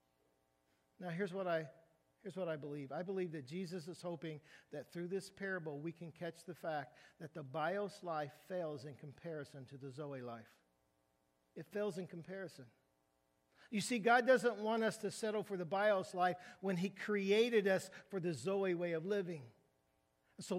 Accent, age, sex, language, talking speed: American, 50-69, male, English, 180 wpm